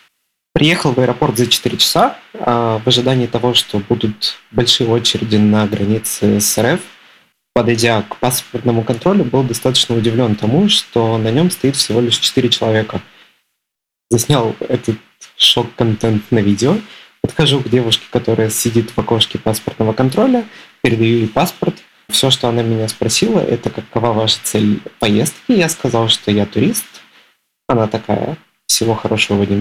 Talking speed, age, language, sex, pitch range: 145 wpm, 20-39, Russian, male, 110-130 Hz